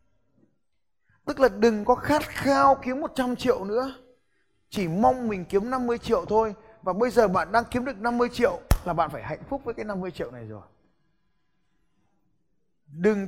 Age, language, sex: 20-39, Vietnamese, male